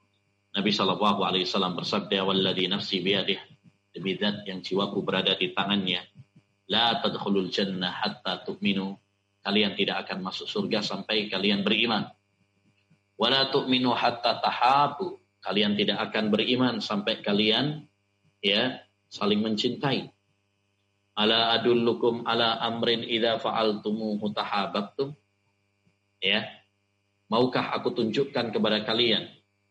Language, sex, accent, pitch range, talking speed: Indonesian, male, native, 100-110 Hz, 110 wpm